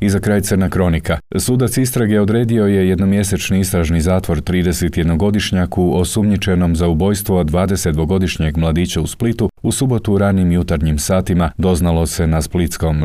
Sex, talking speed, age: male, 140 wpm, 40-59